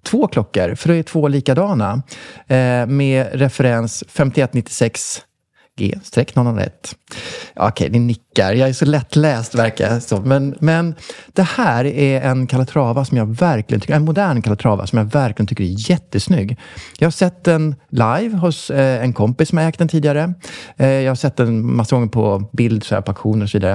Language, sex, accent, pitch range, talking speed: Swedish, male, Norwegian, 110-145 Hz, 180 wpm